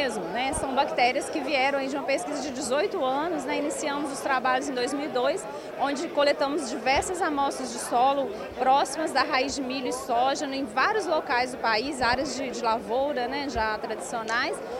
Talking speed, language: 170 wpm, Portuguese